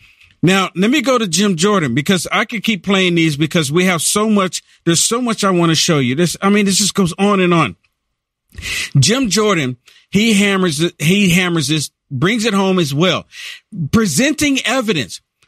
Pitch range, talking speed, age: 155-215 Hz, 190 wpm, 50-69